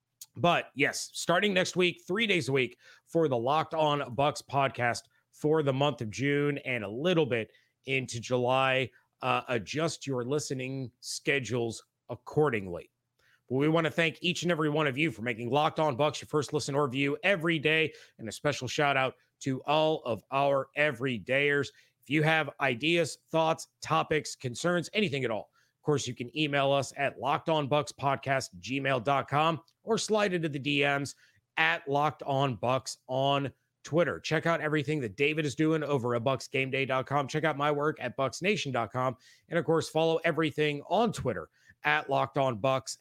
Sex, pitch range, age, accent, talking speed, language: male, 130-160 Hz, 30-49, American, 165 wpm, English